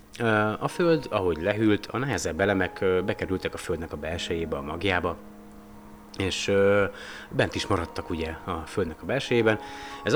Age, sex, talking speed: 30-49, male, 140 wpm